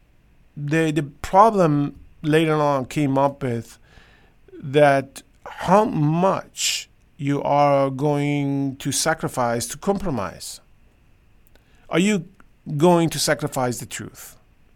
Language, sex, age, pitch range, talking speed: English, male, 50-69, 120-145 Hz, 100 wpm